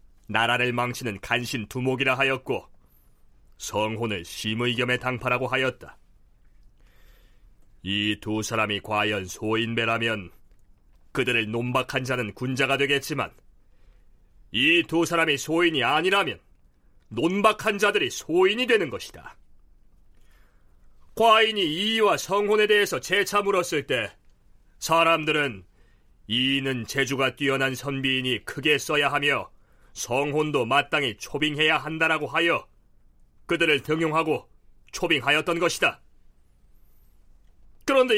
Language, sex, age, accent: Korean, male, 40-59, native